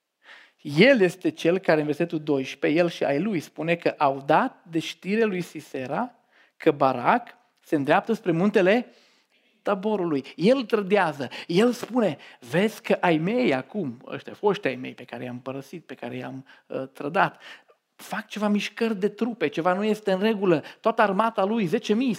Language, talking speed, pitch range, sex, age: Romanian, 170 wpm, 155-215 Hz, male, 40-59